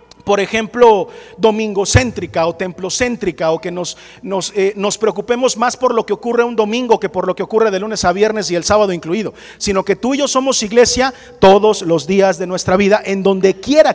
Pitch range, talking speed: 185-245 Hz, 210 wpm